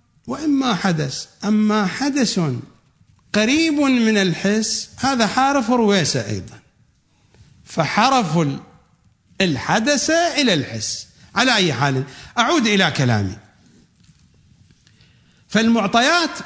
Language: English